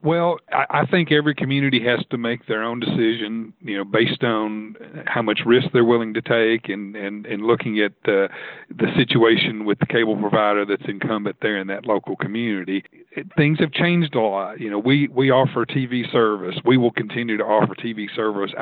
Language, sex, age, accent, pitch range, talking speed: English, male, 40-59, American, 105-135 Hz, 190 wpm